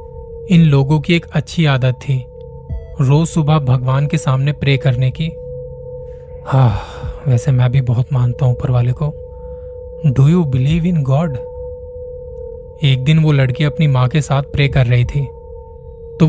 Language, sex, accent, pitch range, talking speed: Hindi, male, native, 130-165 Hz, 160 wpm